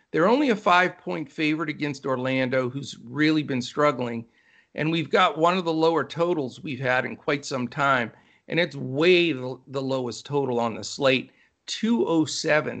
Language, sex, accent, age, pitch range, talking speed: English, male, American, 50-69, 130-160 Hz, 165 wpm